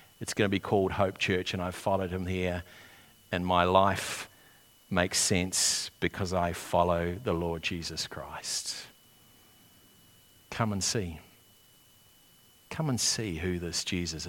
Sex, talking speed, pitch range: male, 140 wpm, 90-125 Hz